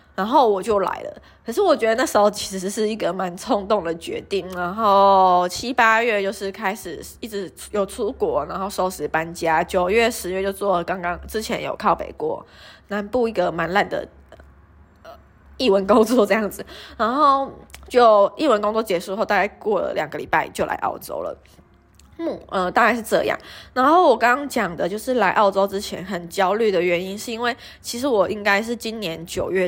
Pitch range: 180-225 Hz